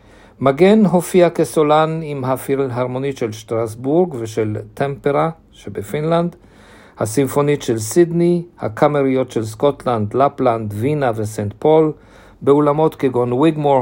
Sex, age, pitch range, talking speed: male, 50-69, 115-145 Hz, 105 wpm